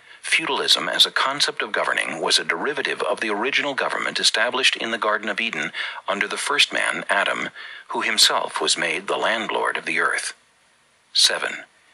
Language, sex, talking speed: English, male, 170 wpm